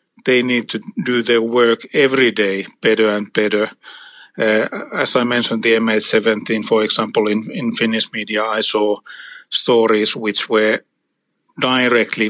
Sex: male